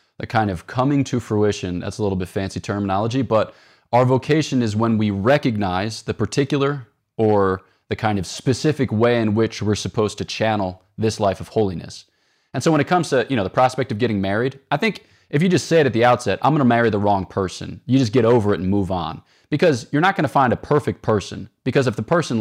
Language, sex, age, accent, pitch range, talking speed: English, male, 20-39, American, 100-135 Hz, 235 wpm